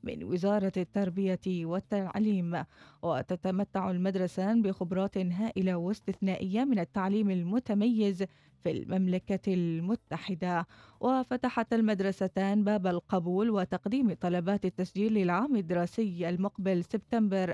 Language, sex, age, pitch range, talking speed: Arabic, female, 20-39, 175-205 Hz, 90 wpm